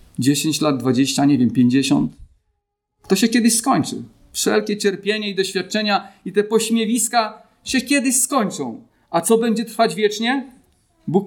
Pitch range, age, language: 180-240 Hz, 40-59, Polish